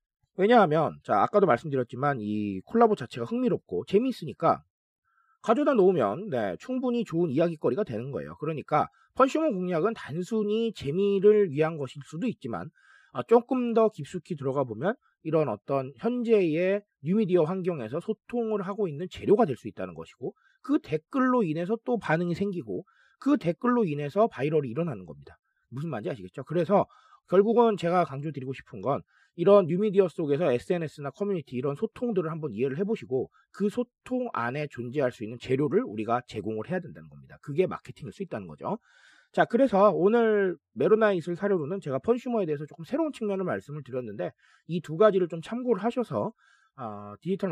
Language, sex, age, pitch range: Korean, male, 40-59, 140-220 Hz